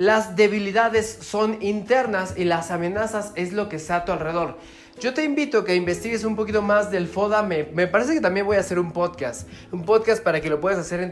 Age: 30-49